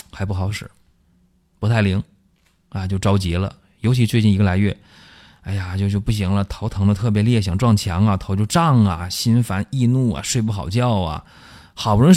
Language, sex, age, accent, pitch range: Chinese, male, 30-49, native, 90-120 Hz